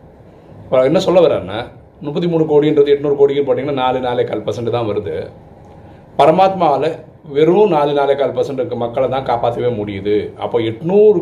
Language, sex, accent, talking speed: Tamil, male, native, 135 wpm